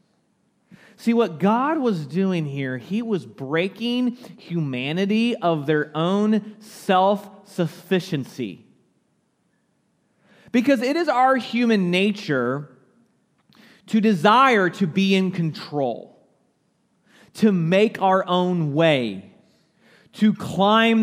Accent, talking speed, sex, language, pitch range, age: American, 95 wpm, male, English, 175-225 Hz, 30-49